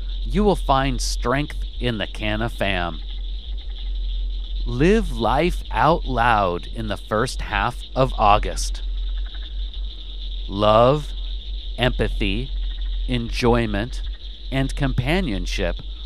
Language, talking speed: English, 85 wpm